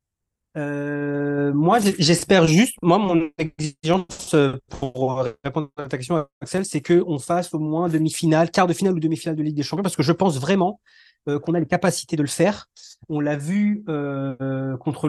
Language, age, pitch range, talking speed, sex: French, 30-49, 150-180 Hz, 190 wpm, male